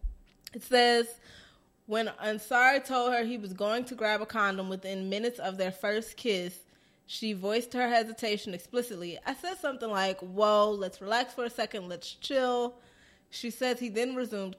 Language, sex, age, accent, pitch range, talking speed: English, female, 20-39, American, 185-235 Hz, 170 wpm